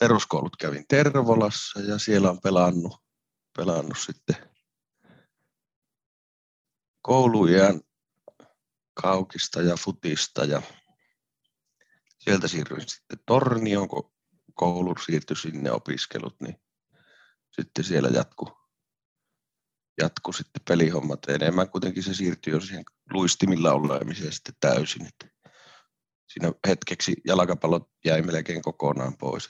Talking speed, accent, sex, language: 95 wpm, native, male, Finnish